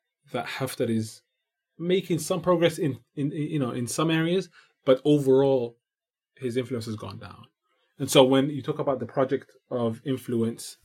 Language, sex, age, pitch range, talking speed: English, male, 20-39, 115-135 Hz, 170 wpm